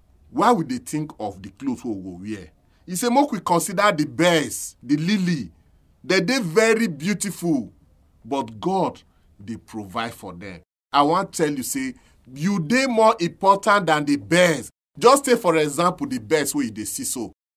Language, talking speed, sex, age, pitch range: English, 180 wpm, male, 40-59, 130-205 Hz